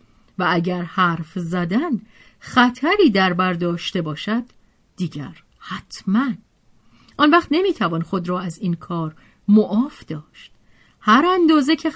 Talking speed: 125 wpm